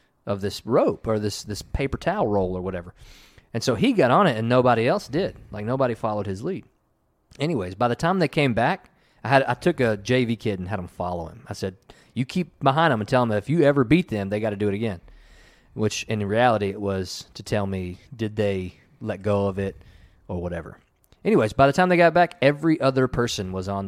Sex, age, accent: male, 30-49, American